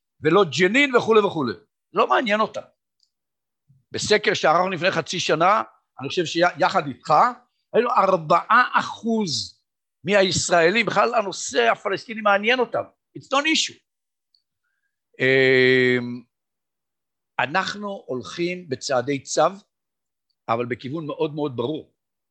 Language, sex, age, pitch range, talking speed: Hebrew, male, 60-79, 135-210 Hz, 100 wpm